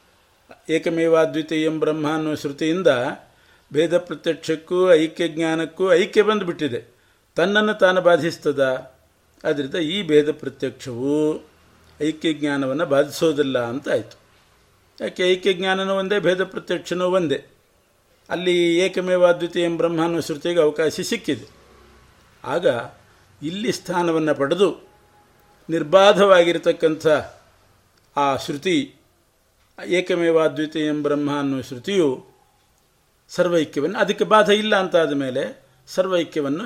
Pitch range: 135-170 Hz